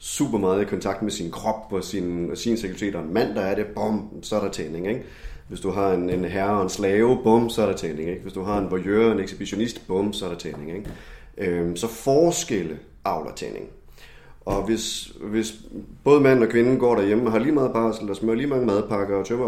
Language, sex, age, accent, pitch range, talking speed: Danish, male, 30-49, native, 95-115 Hz, 245 wpm